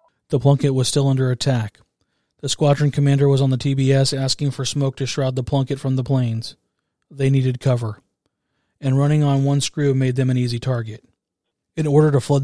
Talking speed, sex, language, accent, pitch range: 195 wpm, male, English, American, 125-140 Hz